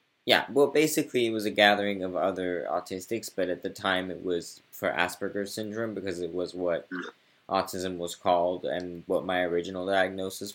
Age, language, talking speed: 20-39, English, 175 wpm